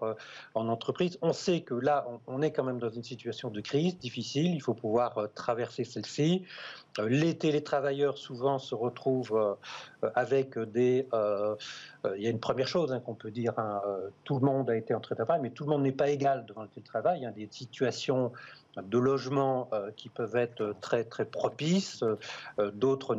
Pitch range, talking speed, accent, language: 115-145 Hz, 180 wpm, French, French